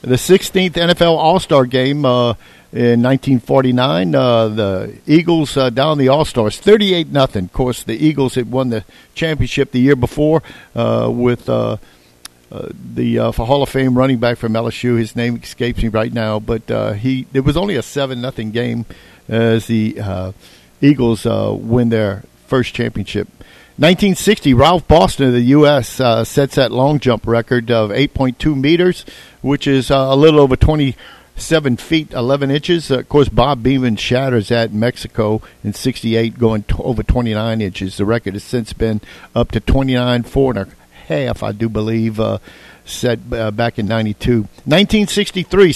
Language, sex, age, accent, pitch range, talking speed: English, male, 50-69, American, 115-140 Hz, 175 wpm